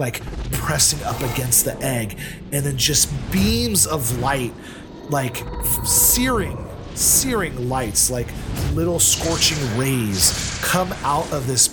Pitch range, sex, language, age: 110-140 Hz, male, English, 30-49